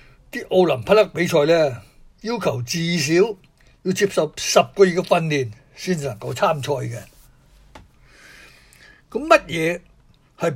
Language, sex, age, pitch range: Chinese, male, 60-79, 135-185 Hz